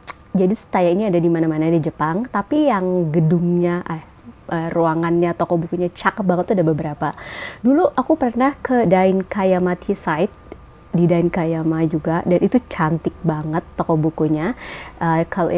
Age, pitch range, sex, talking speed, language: 30-49, 160-190 Hz, female, 140 wpm, Indonesian